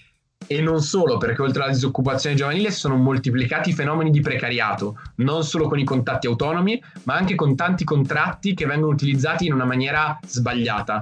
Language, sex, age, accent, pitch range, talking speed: Italian, male, 20-39, native, 130-170 Hz, 175 wpm